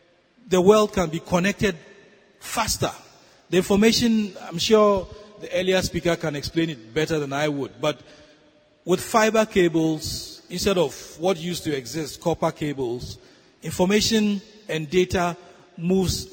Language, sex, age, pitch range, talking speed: English, male, 40-59, 160-195 Hz, 130 wpm